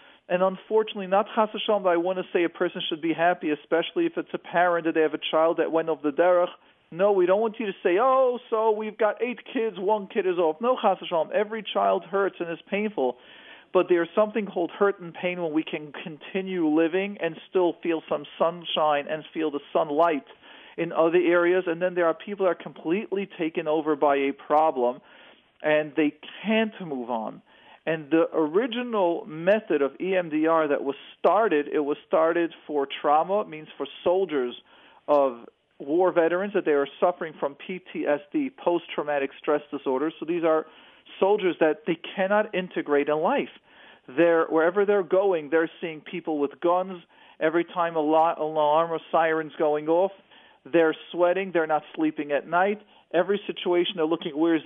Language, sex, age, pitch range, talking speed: English, male, 40-59, 155-190 Hz, 185 wpm